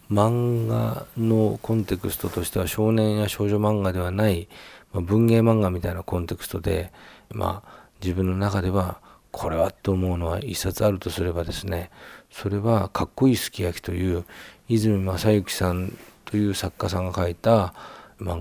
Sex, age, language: male, 40-59, Japanese